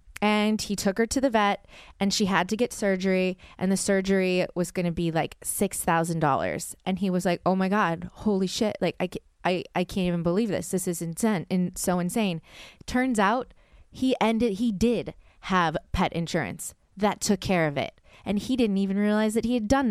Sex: female